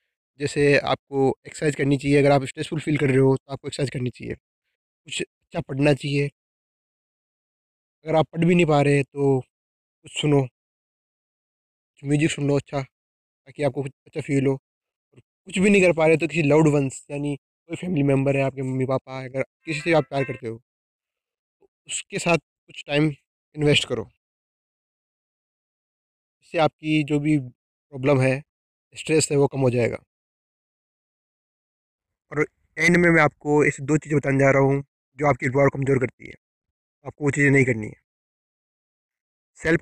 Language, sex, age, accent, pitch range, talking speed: Hindi, male, 20-39, native, 130-150 Hz, 160 wpm